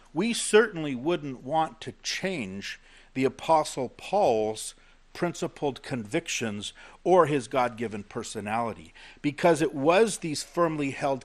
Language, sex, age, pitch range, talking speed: English, male, 50-69, 120-155 Hz, 110 wpm